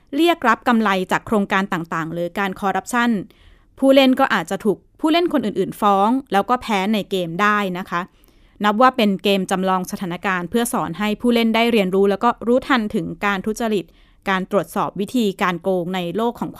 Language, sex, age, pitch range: Thai, female, 20-39, 185-235 Hz